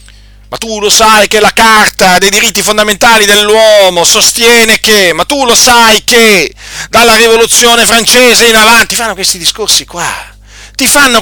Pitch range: 185-245 Hz